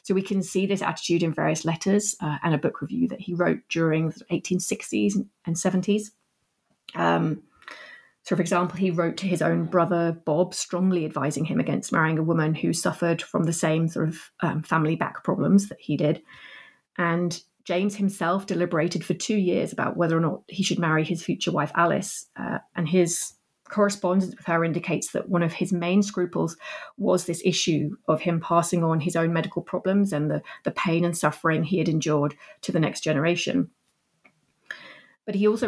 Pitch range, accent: 165-190 Hz, British